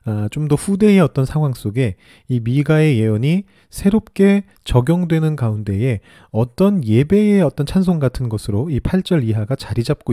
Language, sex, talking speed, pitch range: English, male, 130 wpm, 110-160 Hz